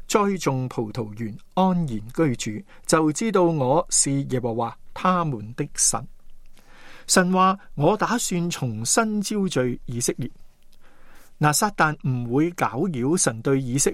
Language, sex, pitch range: Chinese, male, 130-175 Hz